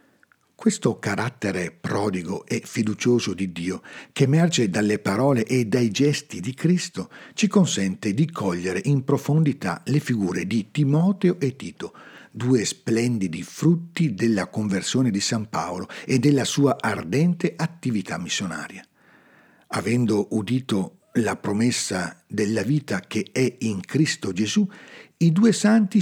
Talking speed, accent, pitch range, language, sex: 130 wpm, native, 110-165 Hz, Italian, male